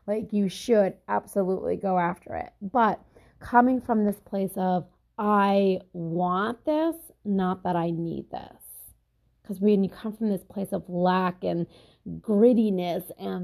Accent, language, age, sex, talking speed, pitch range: American, English, 30-49, female, 145 wpm, 185-220 Hz